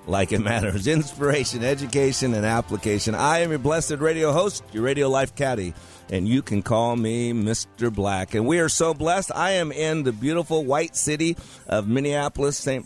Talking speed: 180 wpm